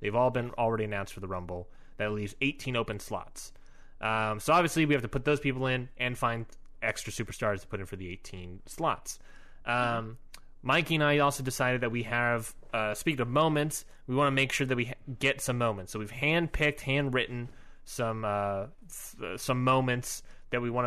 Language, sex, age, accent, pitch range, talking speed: English, male, 20-39, American, 110-135 Hz, 200 wpm